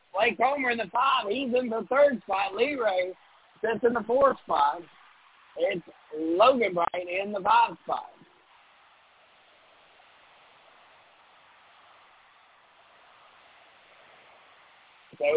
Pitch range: 195-235 Hz